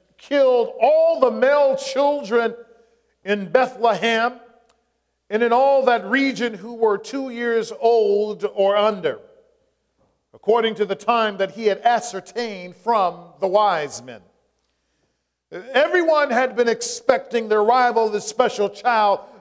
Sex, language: male, English